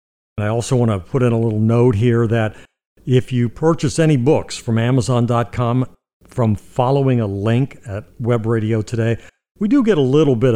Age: 50-69